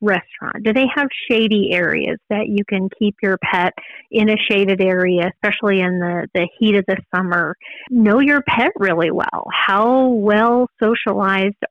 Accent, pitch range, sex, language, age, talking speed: American, 185-235 Hz, female, English, 30-49, 165 wpm